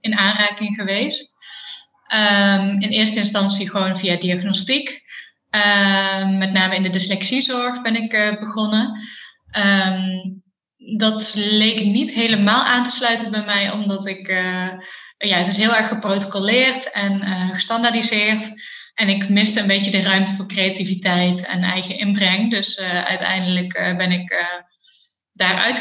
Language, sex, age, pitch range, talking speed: Dutch, female, 20-39, 195-220 Hz, 145 wpm